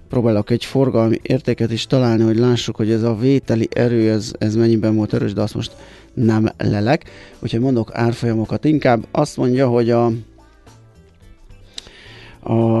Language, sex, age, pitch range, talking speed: Hungarian, male, 30-49, 110-125 Hz, 150 wpm